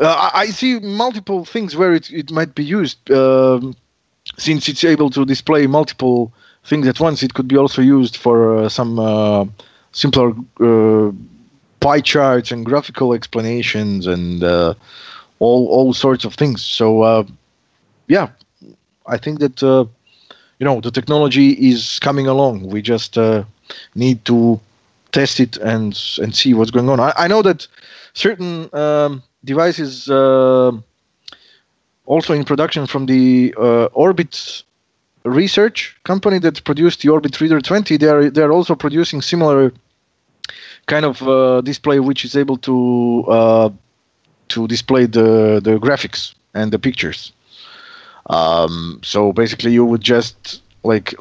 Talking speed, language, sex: 145 wpm, English, male